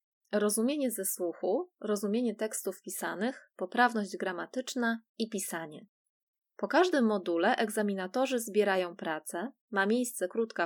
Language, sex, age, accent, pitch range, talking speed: Polish, female, 20-39, native, 190-240 Hz, 105 wpm